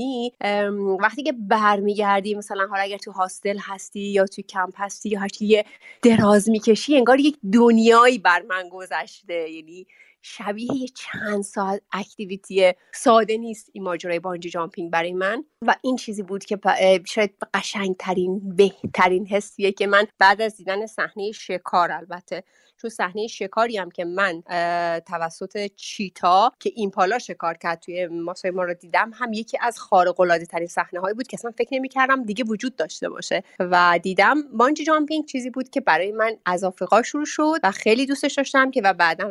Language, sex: Persian, female